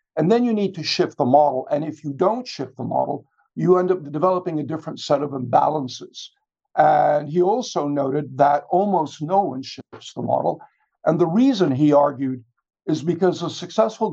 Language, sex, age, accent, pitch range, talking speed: English, male, 60-79, American, 140-180 Hz, 185 wpm